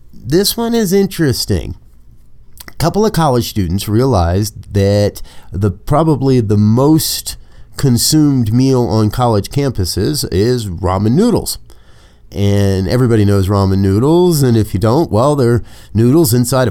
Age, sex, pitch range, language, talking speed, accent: 30-49, male, 100-135 Hz, English, 130 wpm, American